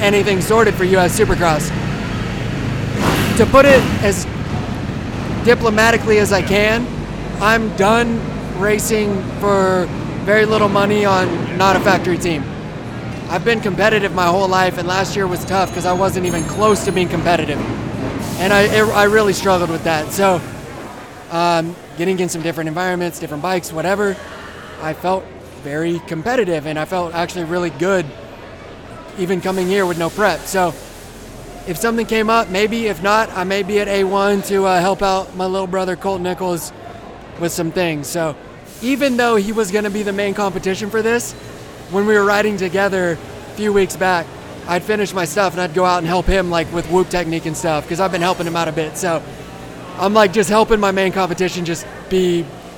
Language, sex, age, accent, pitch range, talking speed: English, male, 20-39, American, 170-205 Hz, 180 wpm